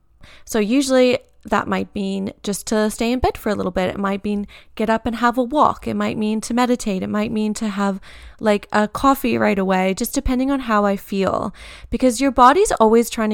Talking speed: 220 wpm